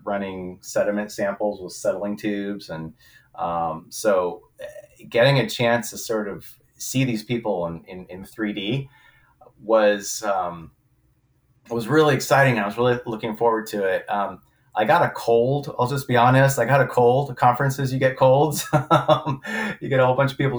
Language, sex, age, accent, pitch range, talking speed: English, male, 30-49, American, 105-135 Hz, 170 wpm